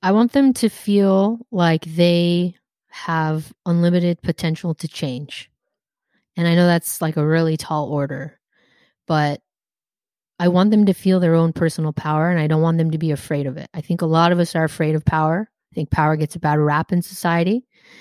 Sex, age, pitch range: female, 30-49, 155-185 Hz